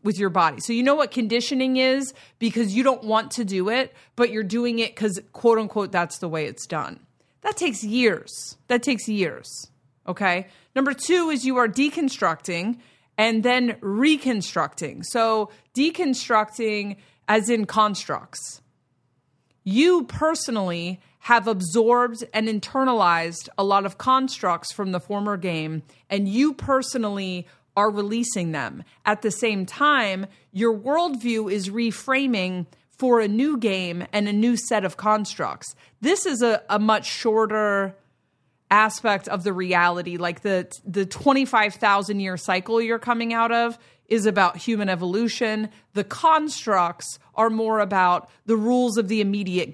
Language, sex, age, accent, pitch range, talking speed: English, female, 30-49, American, 190-245 Hz, 150 wpm